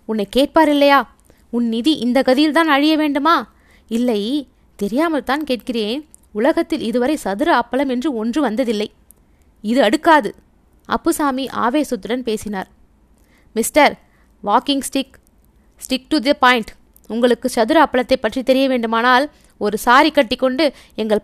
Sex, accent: female, native